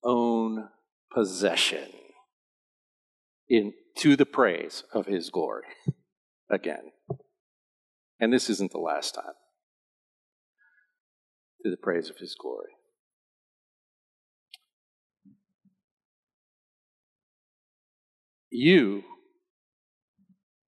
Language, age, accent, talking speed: English, 50-69, American, 65 wpm